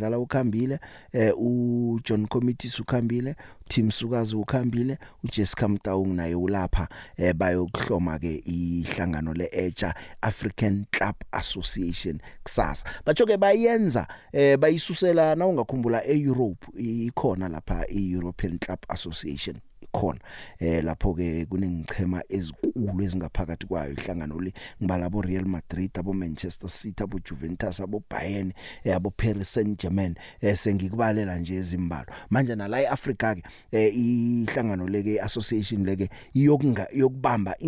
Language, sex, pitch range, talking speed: English, male, 90-115 Hz, 125 wpm